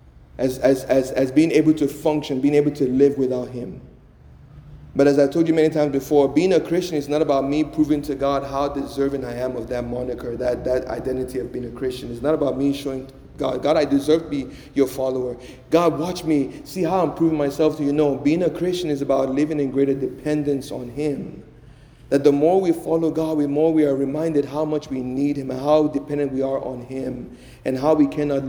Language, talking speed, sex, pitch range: English, 225 wpm, male, 135-155 Hz